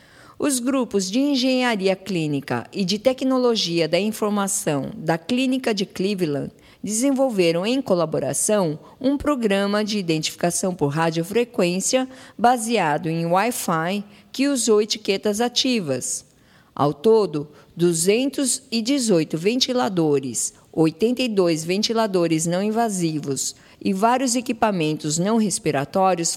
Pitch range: 165-235 Hz